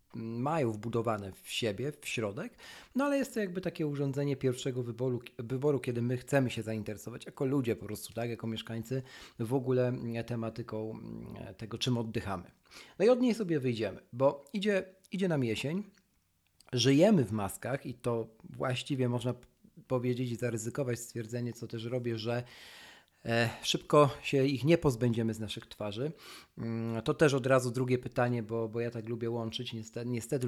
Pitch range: 115-145 Hz